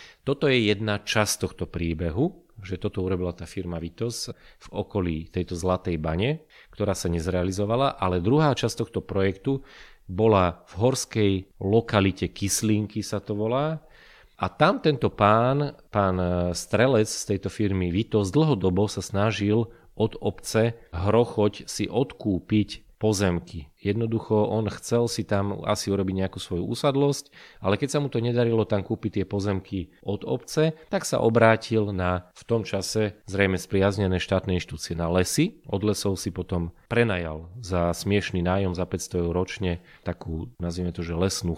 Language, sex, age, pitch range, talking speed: Slovak, male, 30-49, 90-115 Hz, 150 wpm